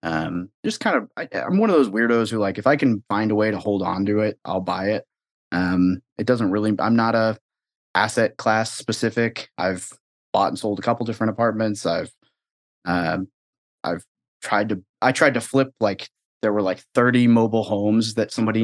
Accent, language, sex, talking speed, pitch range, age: American, English, male, 205 wpm, 95-110 Hz, 30-49